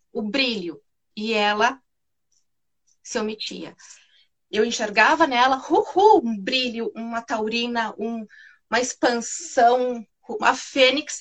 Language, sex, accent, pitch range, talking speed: Portuguese, female, Brazilian, 230-310 Hz, 105 wpm